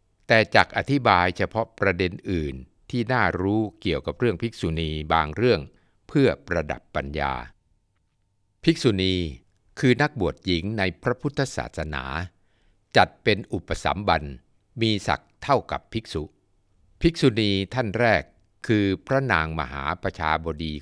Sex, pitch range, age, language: male, 85-115 Hz, 60-79, Thai